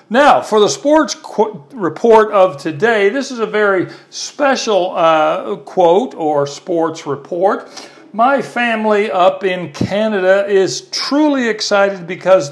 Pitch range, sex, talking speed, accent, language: 155-220 Hz, male, 125 wpm, American, English